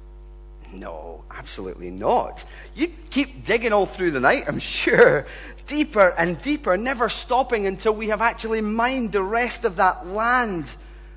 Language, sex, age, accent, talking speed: English, male, 40-59, British, 145 wpm